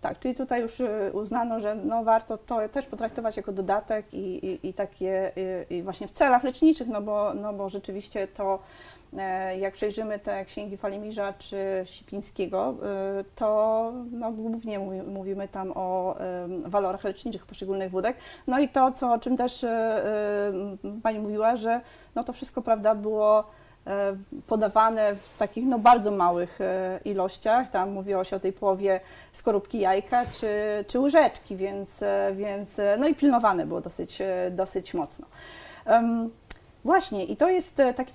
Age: 30-49